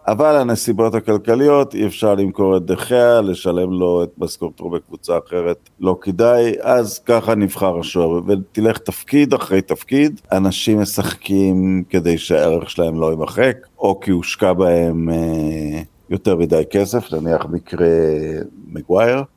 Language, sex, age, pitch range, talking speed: Hebrew, male, 50-69, 90-125 Hz, 135 wpm